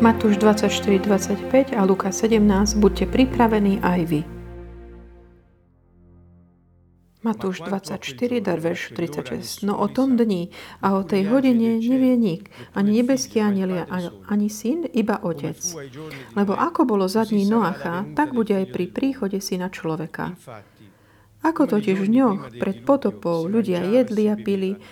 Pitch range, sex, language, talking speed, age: 165-225 Hz, female, Slovak, 130 wpm, 40-59